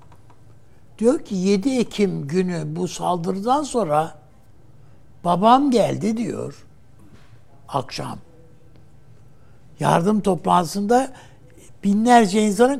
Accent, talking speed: native, 75 wpm